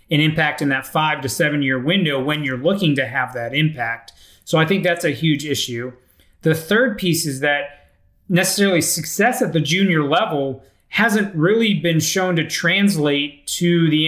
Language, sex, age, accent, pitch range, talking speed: English, male, 30-49, American, 135-175 Hz, 175 wpm